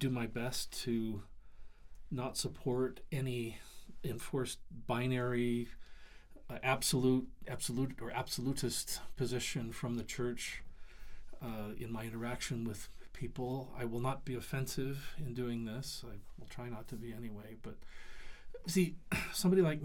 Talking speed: 130 wpm